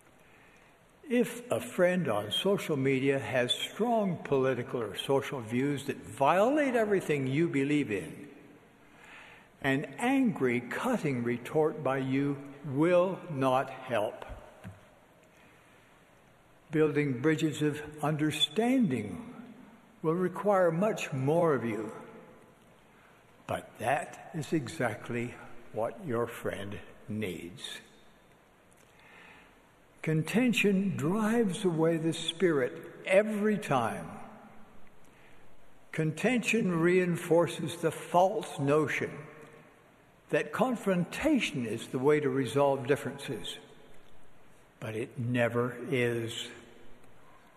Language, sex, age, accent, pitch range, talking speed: English, male, 60-79, American, 130-190 Hz, 85 wpm